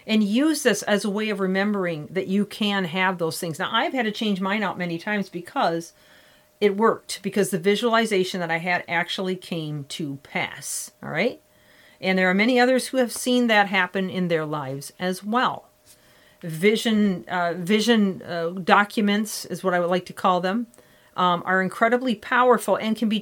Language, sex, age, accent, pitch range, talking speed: English, female, 40-59, American, 175-220 Hz, 190 wpm